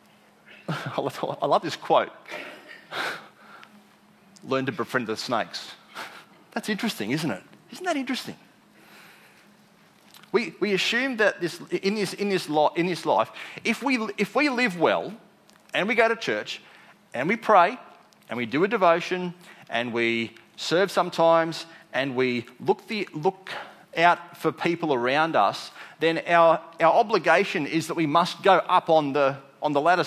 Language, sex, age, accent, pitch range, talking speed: English, male, 30-49, Australian, 150-195 Hz, 155 wpm